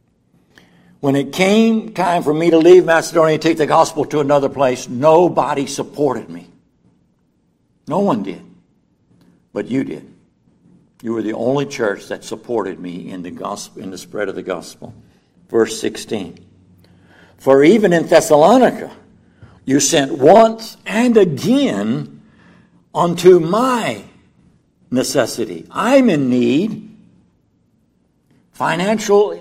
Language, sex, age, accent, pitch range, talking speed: English, male, 60-79, American, 130-180 Hz, 120 wpm